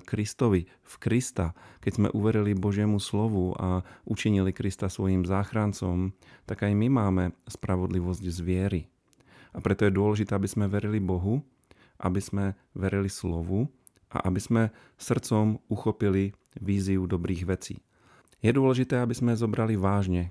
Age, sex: 40-59, male